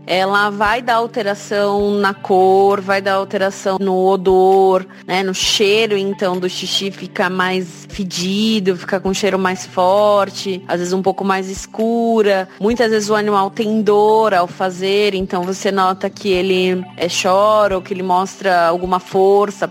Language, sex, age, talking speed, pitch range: Portuguese, female, 20-39, 160 wpm, 190-215 Hz